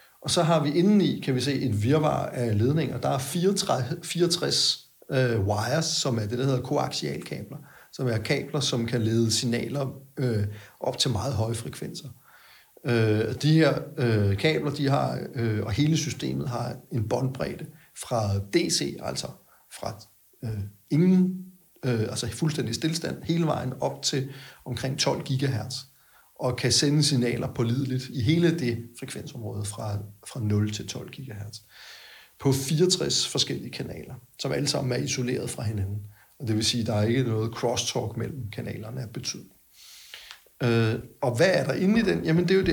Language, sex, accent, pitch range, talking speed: Danish, male, native, 115-150 Hz, 170 wpm